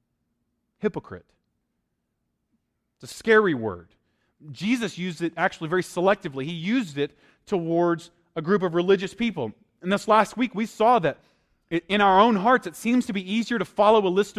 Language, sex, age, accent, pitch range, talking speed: English, male, 30-49, American, 165-210 Hz, 165 wpm